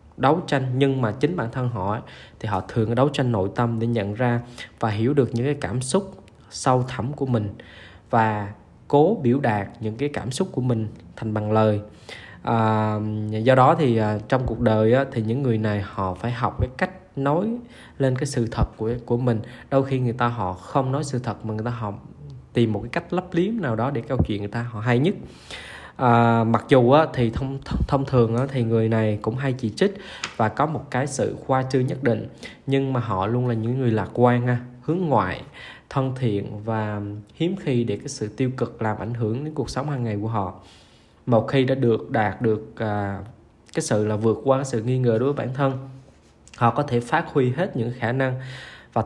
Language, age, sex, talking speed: Vietnamese, 20-39, male, 225 wpm